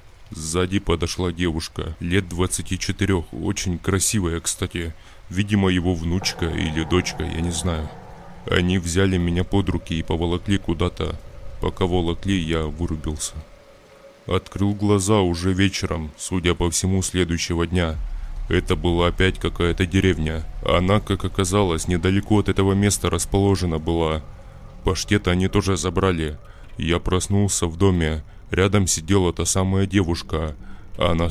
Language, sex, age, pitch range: Russian, male, 20-39, 85-100 Hz